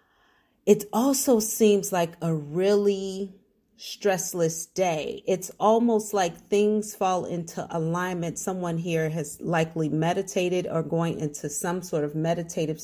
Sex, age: female, 30-49